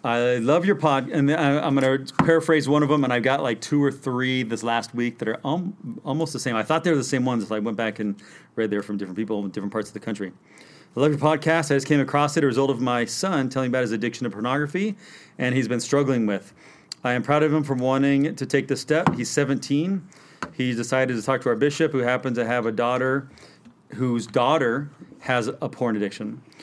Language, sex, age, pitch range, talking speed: English, male, 40-59, 120-150 Hz, 245 wpm